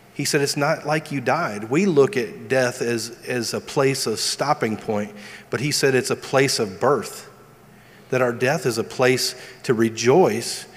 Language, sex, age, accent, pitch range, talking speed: English, male, 40-59, American, 115-135 Hz, 190 wpm